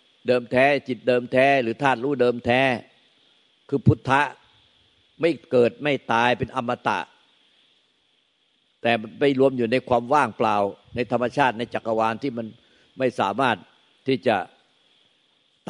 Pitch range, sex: 115-135 Hz, male